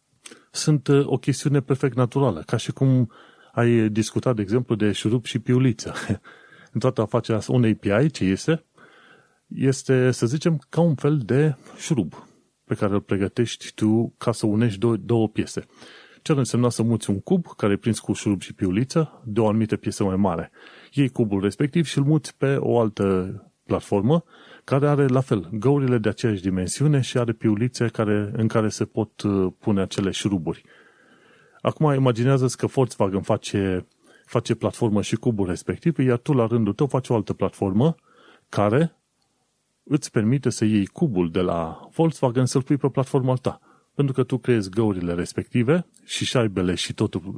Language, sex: Romanian, male